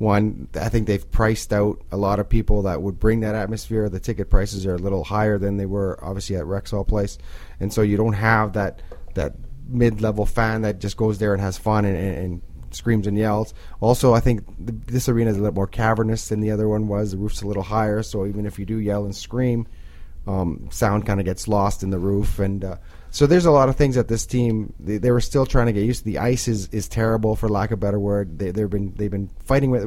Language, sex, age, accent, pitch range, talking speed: English, male, 30-49, American, 100-110 Hz, 250 wpm